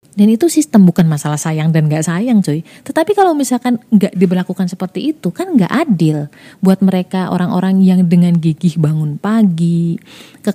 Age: 30-49